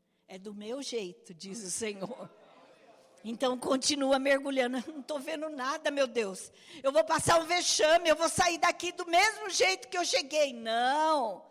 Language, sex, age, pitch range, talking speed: Portuguese, female, 50-69, 255-340 Hz, 165 wpm